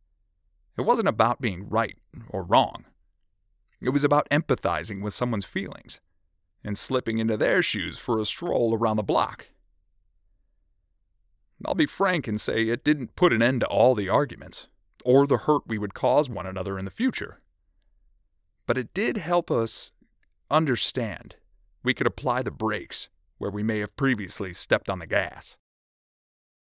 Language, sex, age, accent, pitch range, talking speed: English, male, 30-49, American, 95-130 Hz, 160 wpm